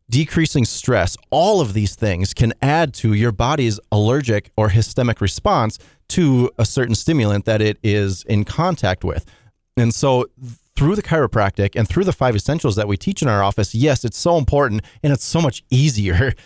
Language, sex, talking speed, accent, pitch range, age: English, male, 180 wpm, American, 105-135 Hz, 30-49